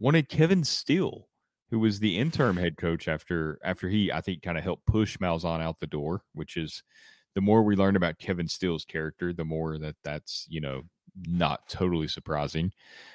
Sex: male